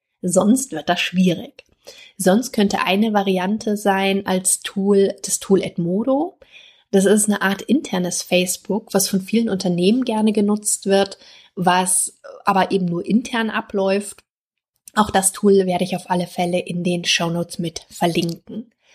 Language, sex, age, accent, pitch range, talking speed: German, female, 30-49, German, 185-215 Hz, 150 wpm